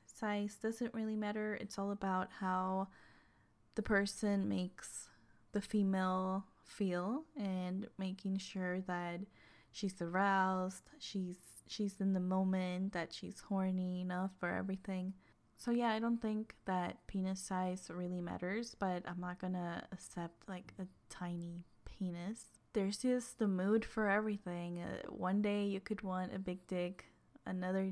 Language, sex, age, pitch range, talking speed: English, female, 10-29, 180-205 Hz, 140 wpm